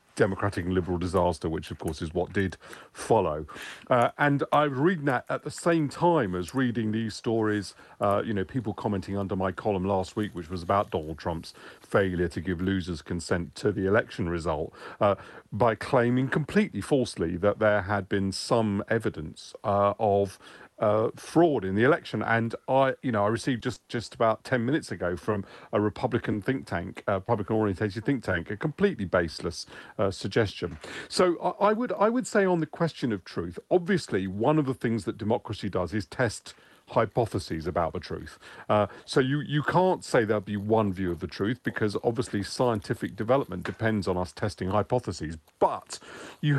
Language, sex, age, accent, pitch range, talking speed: English, male, 40-59, British, 100-135 Hz, 185 wpm